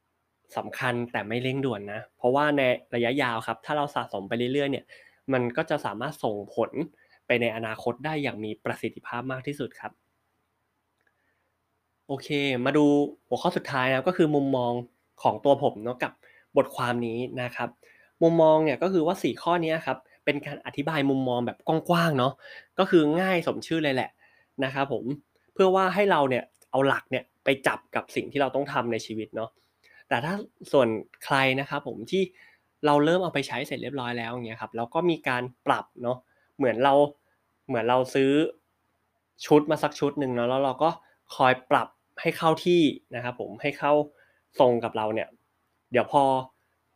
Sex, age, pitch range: male, 20-39, 120-150 Hz